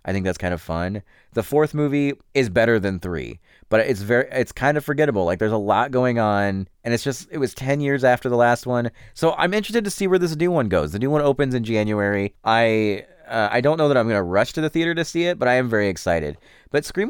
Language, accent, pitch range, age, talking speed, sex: English, American, 95-145 Hz, 30-49, 265 wpm, male